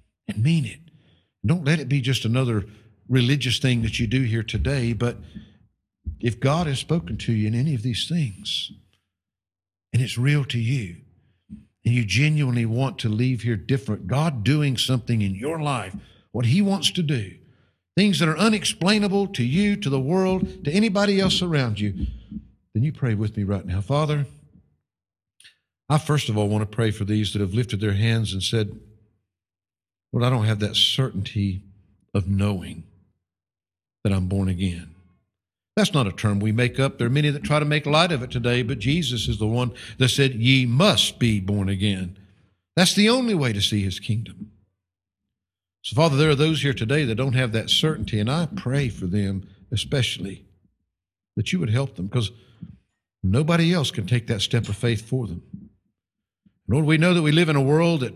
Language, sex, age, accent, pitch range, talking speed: English, male, 50-69, American, 100-140 Hz, 190 wpm